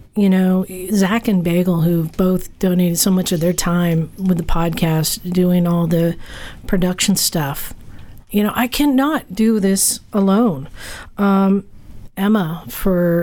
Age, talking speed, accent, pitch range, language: 50-69, 140 wpm, American, 170-205 Hz, English